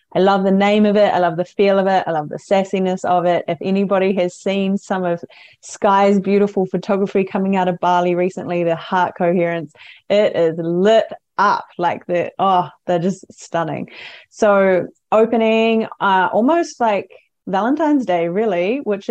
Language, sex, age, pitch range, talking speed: English, female, 20-39, 175-225 Hz, 170 wpm